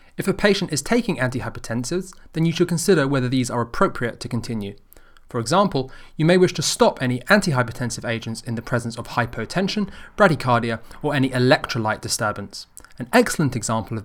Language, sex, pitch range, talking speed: English, male, 115-160 Hz, 170 wpm